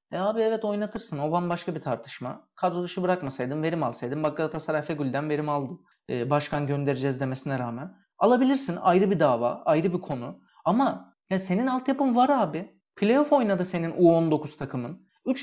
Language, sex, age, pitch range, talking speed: Turkish, male, 30-49, 145-210 Hz, 160 wpm